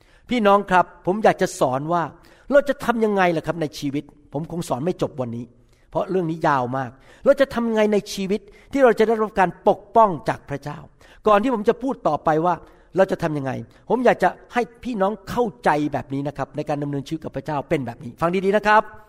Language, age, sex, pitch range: Thai, 60-79, male, 155-215 Hz